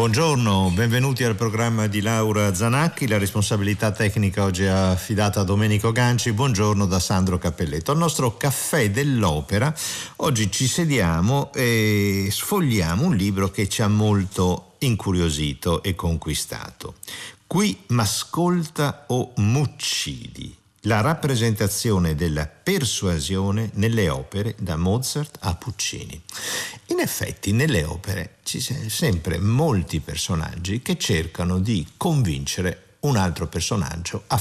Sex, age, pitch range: male, 50-69, 95-120 Hz